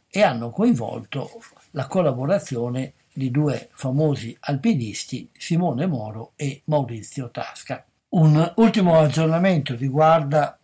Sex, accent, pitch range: male, native, 130-160 Hz